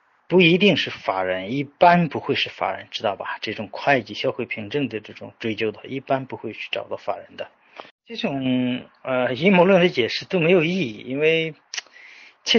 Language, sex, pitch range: Chinese, male, 130-185 Hz